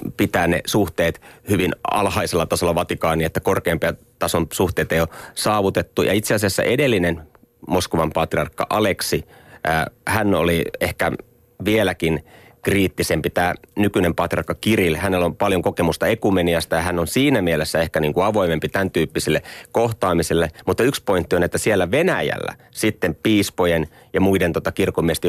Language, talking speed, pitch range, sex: Finnish, 135 wpm, 85-95 Hz, male